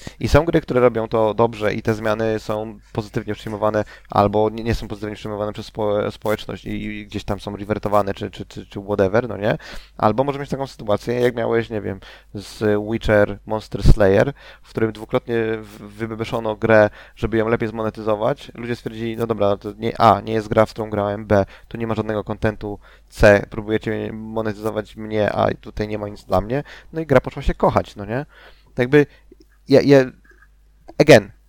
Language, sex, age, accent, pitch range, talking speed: Polish, male, 20-39, native, 105-115 Hz, 190 wpm